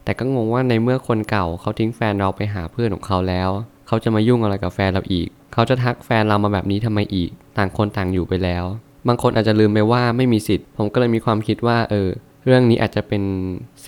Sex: male